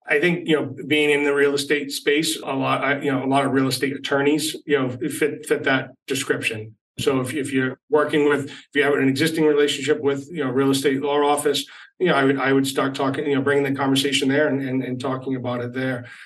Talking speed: 245 wpm